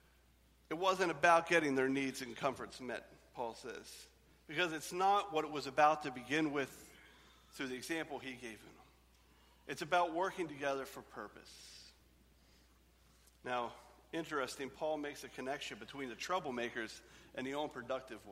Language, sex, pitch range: English, male, 125-180 Hz